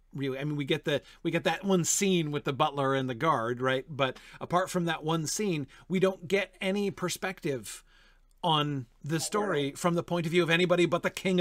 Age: 40-59